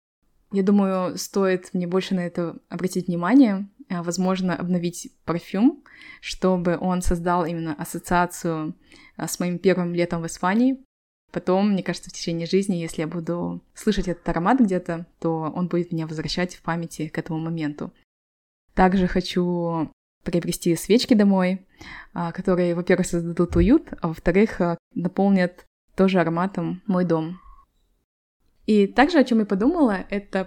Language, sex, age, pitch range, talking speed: Russian, female, 20-39, 170-195 Hz, 140 wpm